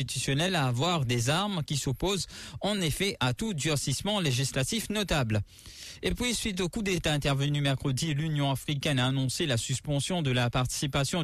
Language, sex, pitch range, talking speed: English, male, 130-180 Hz, 160 wpm